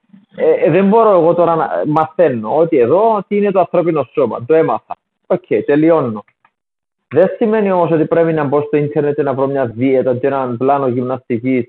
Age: 30-49